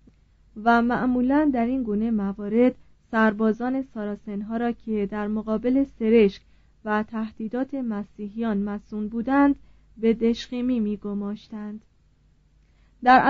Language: Persian